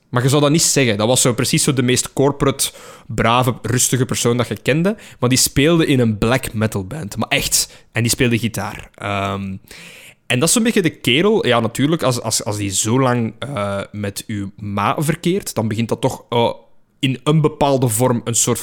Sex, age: male, 20-39